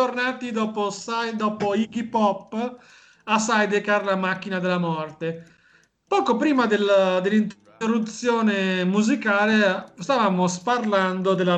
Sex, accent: male, native